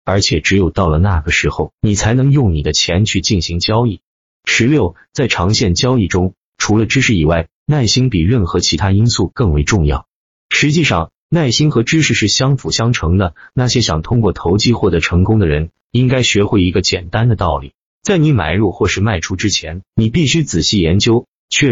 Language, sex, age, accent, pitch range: Chinese, male, 30-49, native, 85-120 Hz